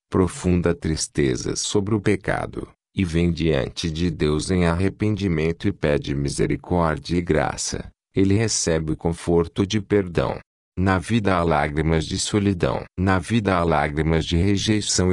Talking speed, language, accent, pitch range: 140 wpm, Portuguese, Brazilian, 80-100 Hz